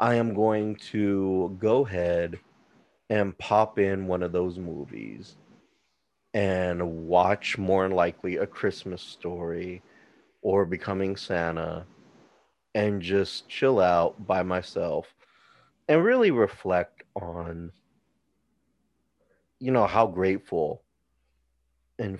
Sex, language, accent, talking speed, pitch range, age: male, English, American, 105 wpm, 85-100 Hz, 30-49